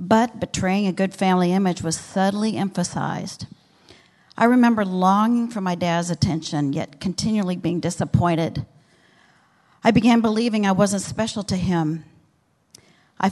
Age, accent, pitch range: 50-69, American, 170-205 Hz